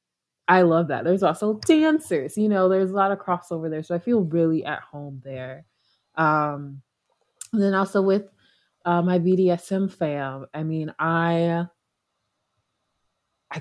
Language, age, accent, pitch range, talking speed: English, 20-39, American, 145-200 Hz, 150 wpm